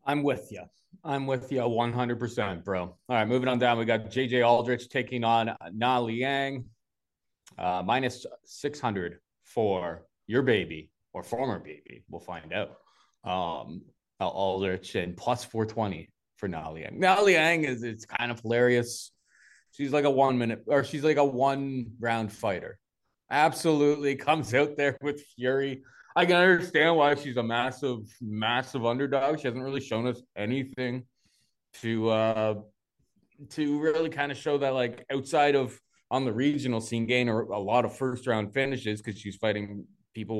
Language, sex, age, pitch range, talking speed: English, male, 20-39, 110-140 Hz, 150 wpm